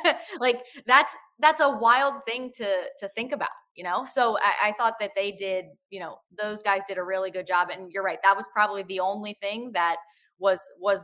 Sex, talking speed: female, 220 wpm